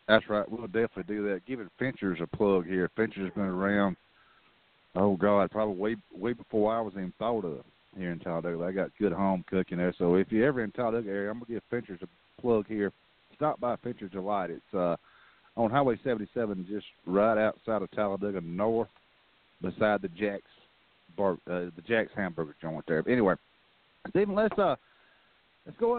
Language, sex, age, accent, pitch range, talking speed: English, male, 40-59, American, 100-130 Hz, 195 wpm